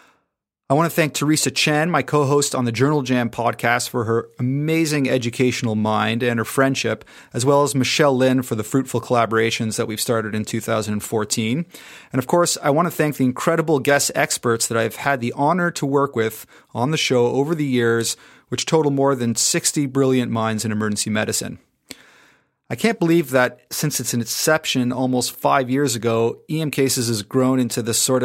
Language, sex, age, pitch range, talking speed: English, male, 30-49, 120-140 Hz, 190 wpm